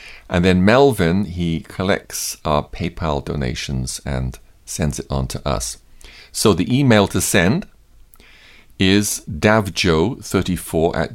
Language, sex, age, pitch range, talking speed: English, male, 50-69, 75-100 Hz, 120 wpm